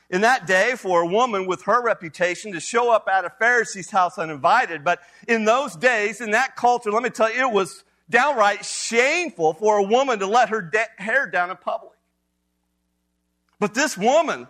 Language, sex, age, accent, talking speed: English, male, 40-59, American, 185 wpm